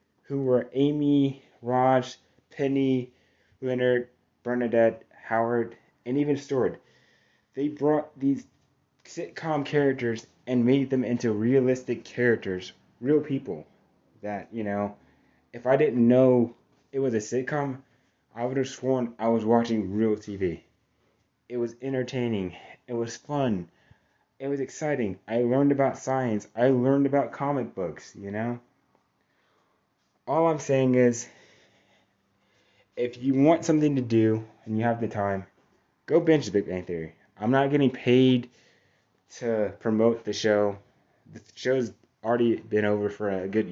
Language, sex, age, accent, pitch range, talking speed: English, male, 20-39, American, 105-135 Hz, 140 wpm